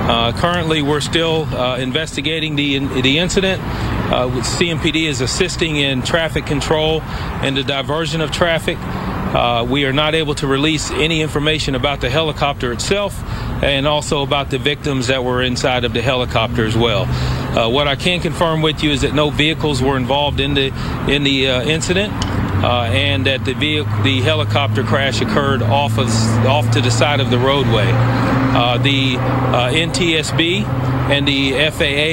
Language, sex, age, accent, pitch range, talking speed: English, male, 40-59, American, 120-150 Hz, 175 wpm